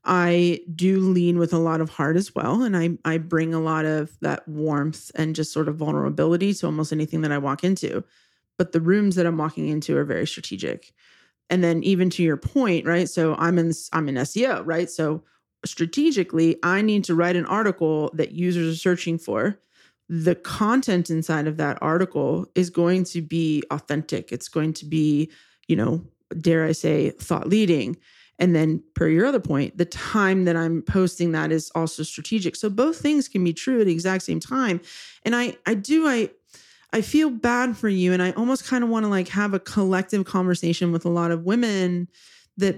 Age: 30-49